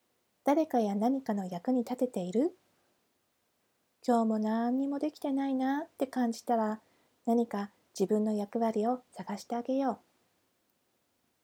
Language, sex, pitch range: Japanese, female, 220-265 Hz